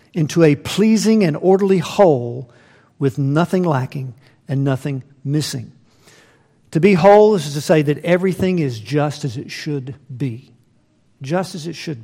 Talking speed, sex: 150 wpm, male